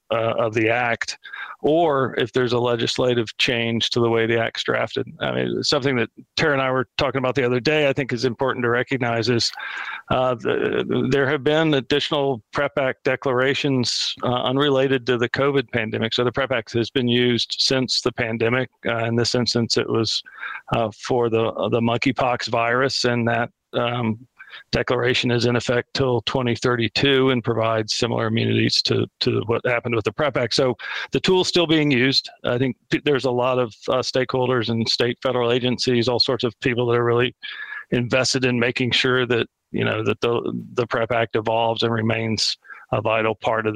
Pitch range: 115-130 Hz